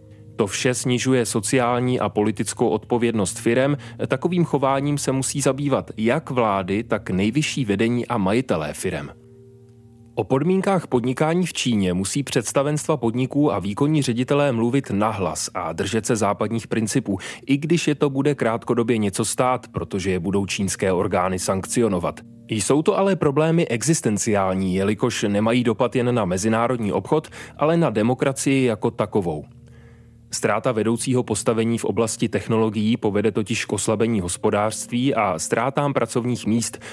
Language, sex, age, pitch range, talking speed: Czech, male, 30-49, 105-135 Hz, 140 wpm